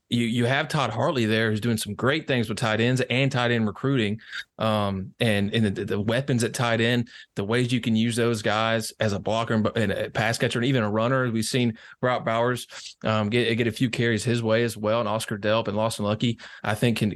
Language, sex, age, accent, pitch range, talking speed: English, male, 20-39, American, 110-125 Hz, 240 wpm